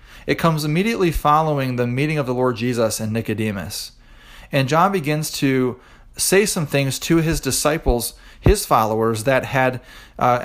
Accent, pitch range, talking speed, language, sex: American, 115-150 Hz, 155 wpm, English, male